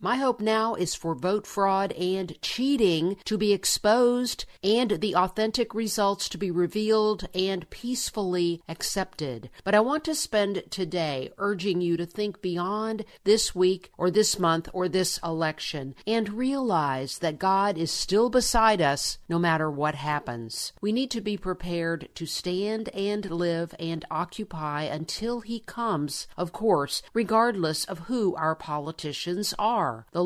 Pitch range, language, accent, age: 165-210 Hz, English, American, 50-69